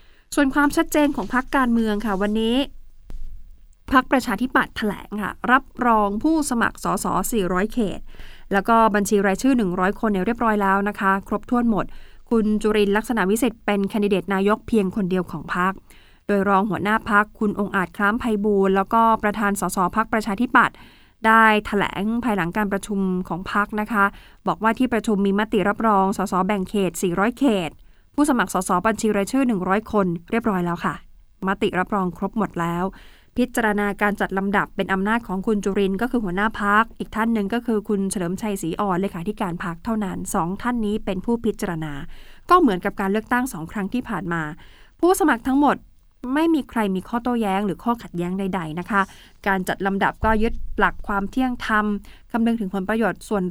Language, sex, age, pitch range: Thai, female, 20-39, 195-225 Hz